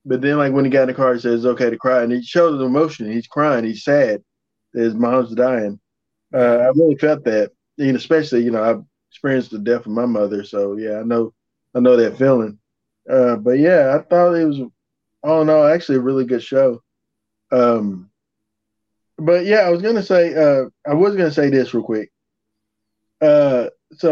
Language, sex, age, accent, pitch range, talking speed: English, male, 20-39, American, 115-155 Hz, 210 wpm